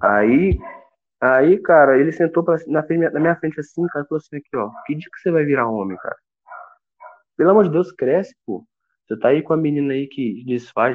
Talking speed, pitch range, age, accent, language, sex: 220 wpm, 120-170 Hz, 20-39, Brazilian, Portuguese, male